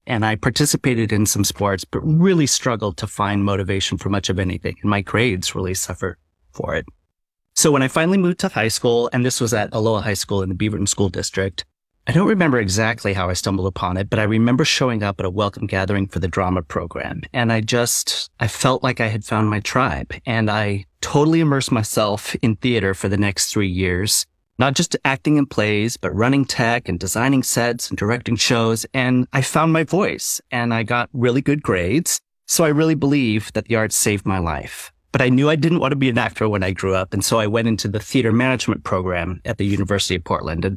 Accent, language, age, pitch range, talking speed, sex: American, English, 30-49, 95-125 Hz, 225 wpm, male